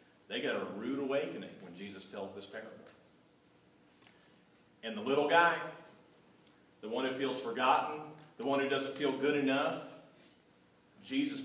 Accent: American